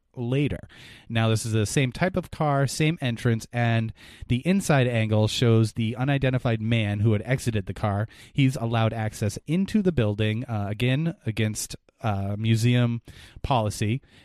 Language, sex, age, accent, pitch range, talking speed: English, male, 30-49, American, 110-135 Hz, 150 wpm